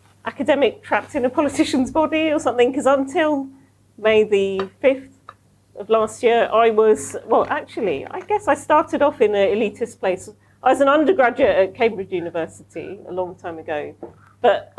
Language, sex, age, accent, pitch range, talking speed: English, female, 40-59, British, 205-275 Hz, 165 wpm